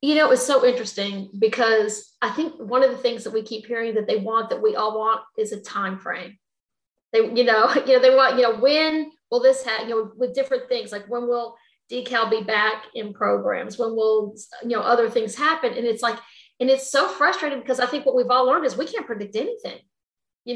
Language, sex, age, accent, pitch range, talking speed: English, female, 40-59, American, 220-270 Hz, 235 wpm